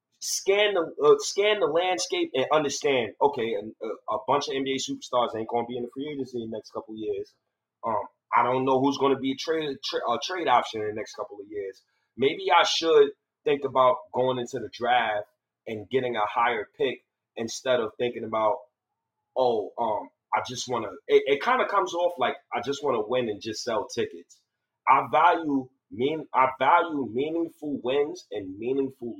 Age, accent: 30-49, American